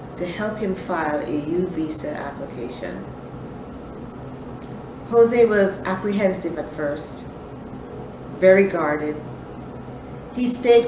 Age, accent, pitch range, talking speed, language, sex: 40-59, American, 155-205 Hz, 95 wpm, English, female